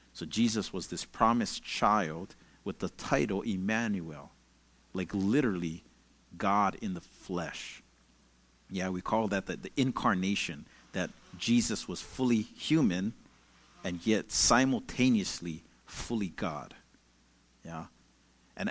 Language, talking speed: English, 110 wpm